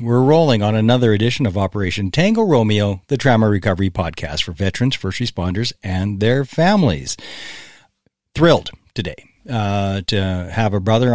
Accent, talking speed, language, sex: American, 145 wpm, English, male